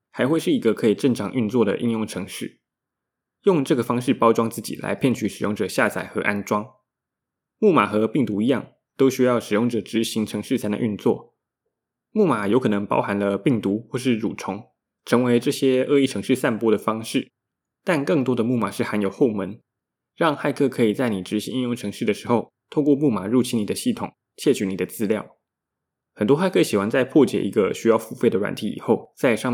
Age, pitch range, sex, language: 20-39, 105-125 Hz, male, Chinese